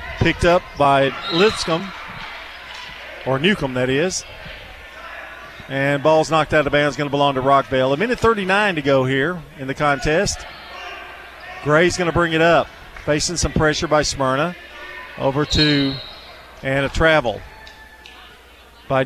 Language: English